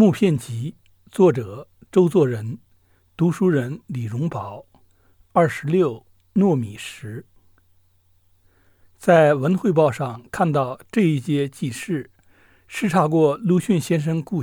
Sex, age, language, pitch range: male, 60-79, Chinese, 110-170 Hz